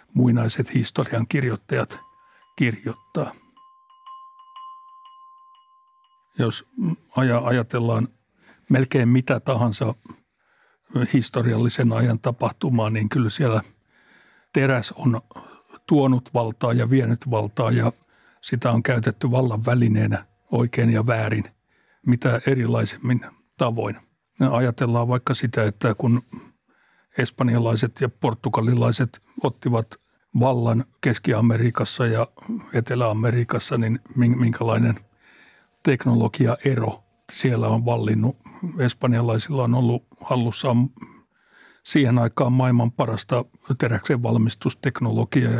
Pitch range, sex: 115-130 Hz, male